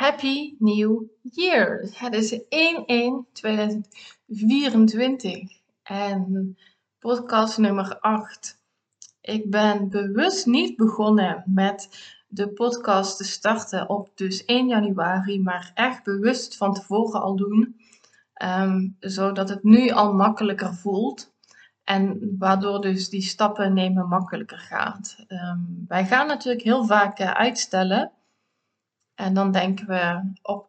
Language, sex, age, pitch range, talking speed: Dutch, female, 20-39, 190-230 Hz, 110 wpm